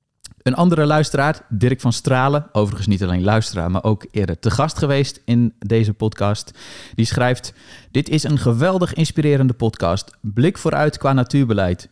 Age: 40-59